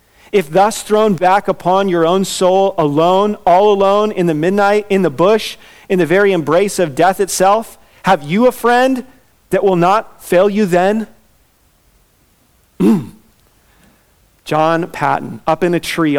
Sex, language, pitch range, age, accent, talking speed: male, English, 150-185 Hz, 40-59, American, 150 wpm